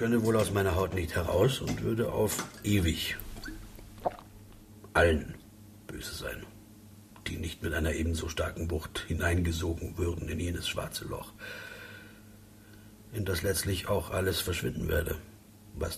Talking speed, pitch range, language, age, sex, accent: 135 wpm, 90-105 Hz, German, 60-79, male, German